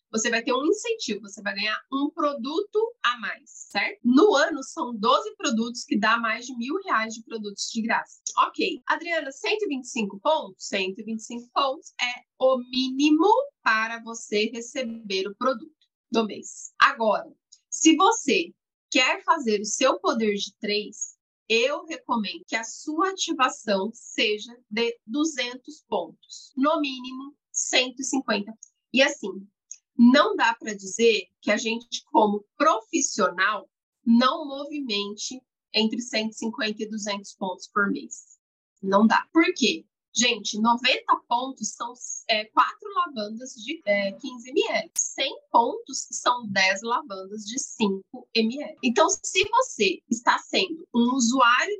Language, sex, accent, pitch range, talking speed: Portuguese, female, Brazilian, 220-315 Hz, 135 wpm